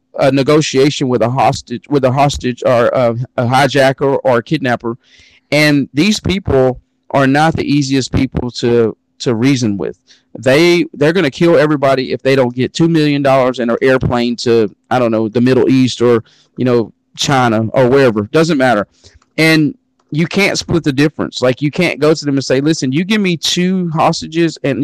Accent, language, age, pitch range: American, English, 40-59, 125-155 Hz